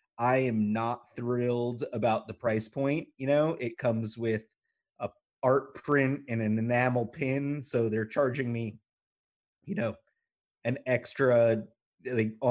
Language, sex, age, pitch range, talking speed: English, male, 30-49, 115-135 Hz, 140 wpm